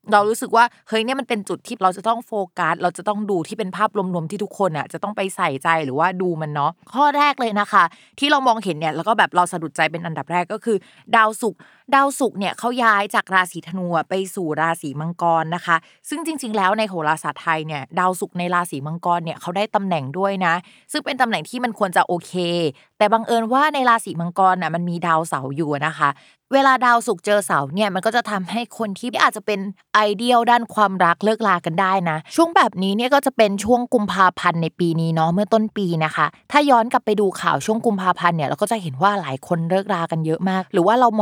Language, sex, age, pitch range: Thai, female, 20-39, 170-230 Hz